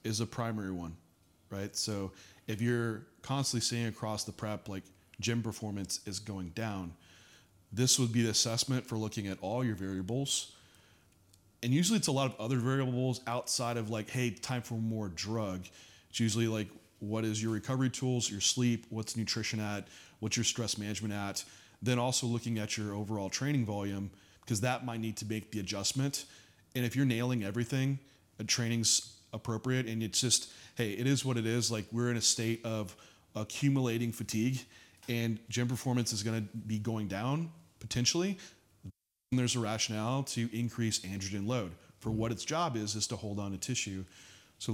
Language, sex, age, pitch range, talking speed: English, male, 30-49, 105-120 Hz, 180 wpm